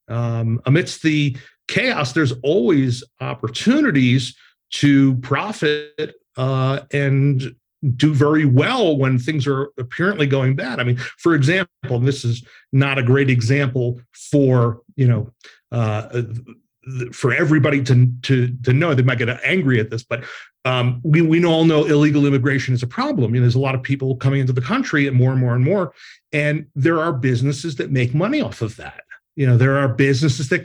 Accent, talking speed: American, 180 wpm